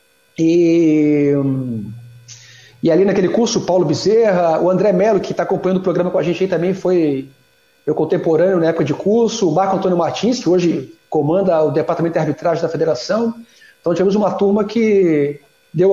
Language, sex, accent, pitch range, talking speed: Portuguese, male, Brazilian, 165-235 Hz, 175 wpm